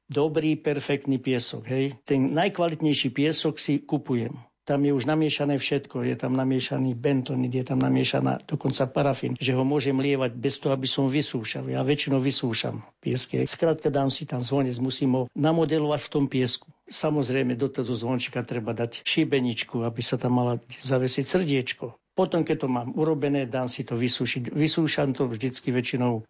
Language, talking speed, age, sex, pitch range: Slovak, 165 wpm, 60-79, male, 125-145 Hz